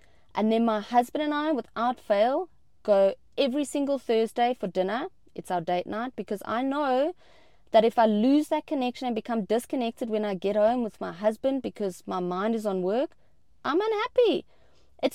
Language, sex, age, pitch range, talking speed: English, female, 30-49, 190-255 Hz, 180 wpm